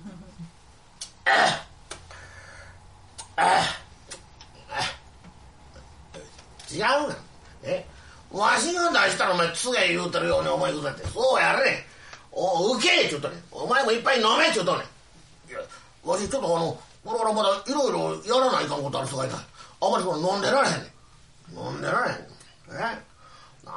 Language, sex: Japanese, male